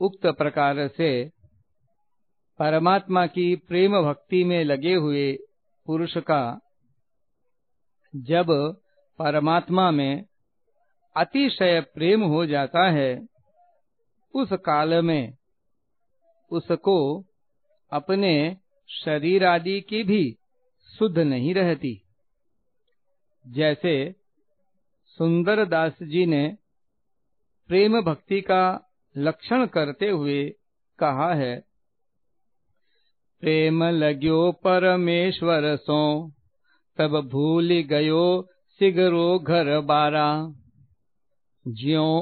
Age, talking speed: 50-69, 80 wpm